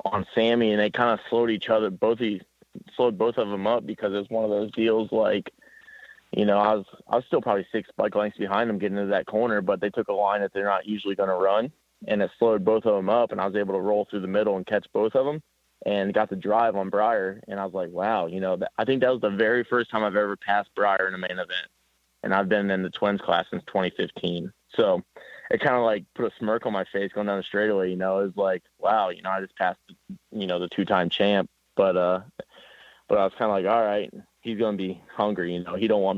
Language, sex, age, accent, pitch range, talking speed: English, male, 20-39, American, 95-110 Hz, 270 wpm